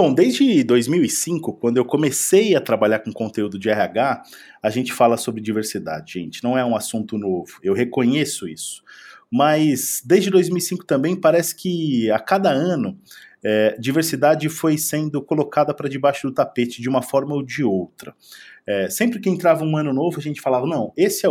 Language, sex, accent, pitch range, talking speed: Portuguese, male, Brazilian, 110-145 Hz, 175 wpm